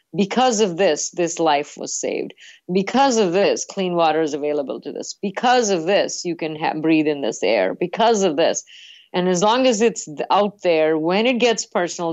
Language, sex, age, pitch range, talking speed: English, female, 50-69, 155-195 Hz, 195 wpm